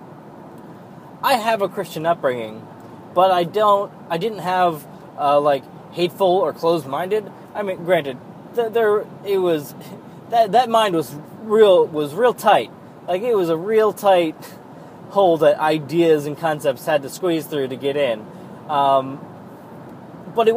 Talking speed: 150 wpm